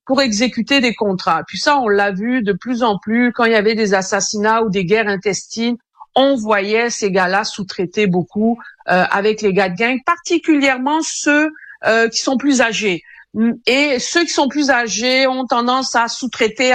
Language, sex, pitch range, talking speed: French, female, 215-290 Hz, 185 wpm